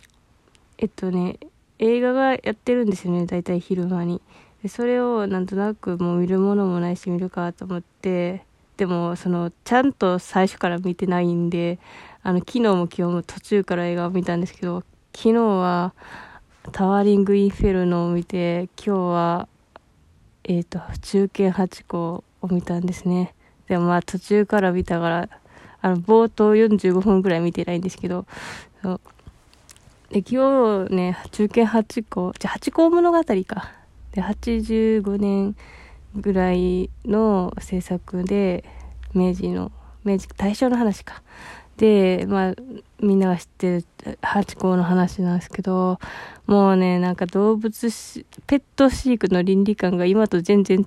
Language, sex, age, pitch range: Japanese, female, 20-39, 175-205 Hz